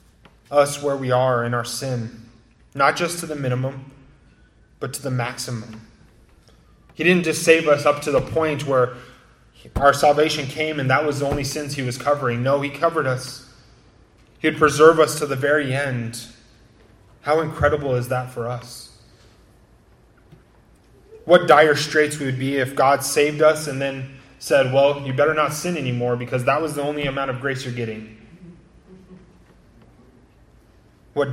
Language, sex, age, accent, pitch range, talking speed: English, male, 20-39, American, 120-150 Hz, 165 wpm